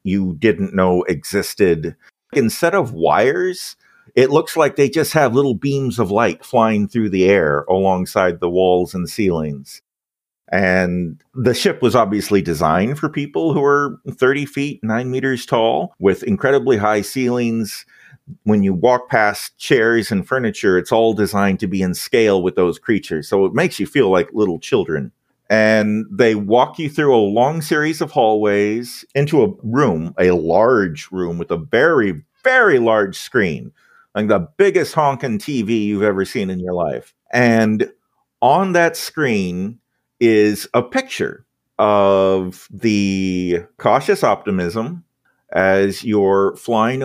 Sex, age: male, 40-59